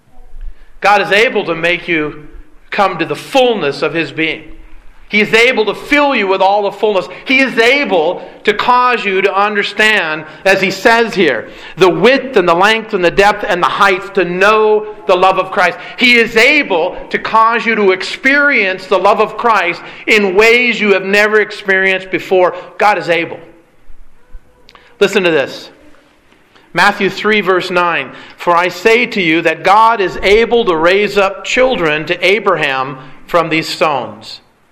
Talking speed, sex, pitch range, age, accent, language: 170 wpm, male, 170-210 Hz, 40-59, American, English